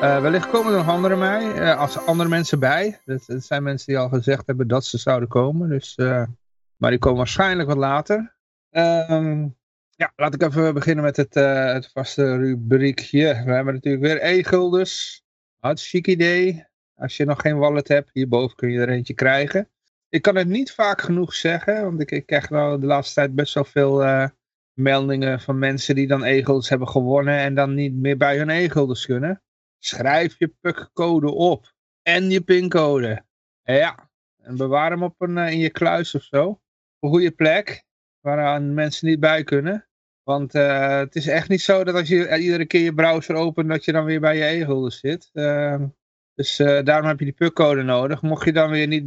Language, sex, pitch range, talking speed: Dutch, male, 135-170 Hz, 200 wpm